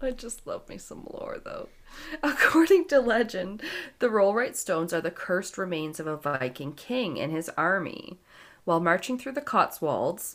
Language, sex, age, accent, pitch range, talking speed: English, female, 40-59, American, 150-210 Hz, 170 wpm